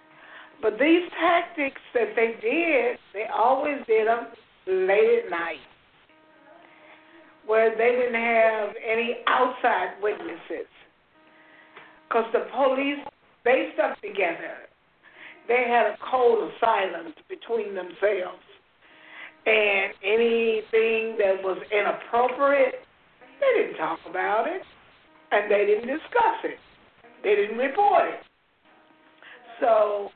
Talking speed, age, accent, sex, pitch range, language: 105 wpm, 50-69, American, female, 225-350 Hz, English